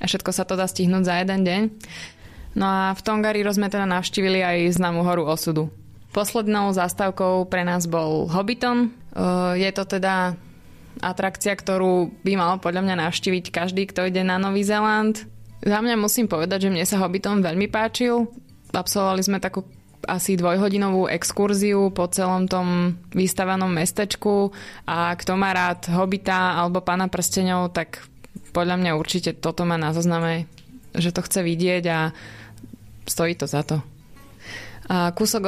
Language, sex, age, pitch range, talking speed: Slovak, female, 20-39, 175-195 Hz, 150 wpm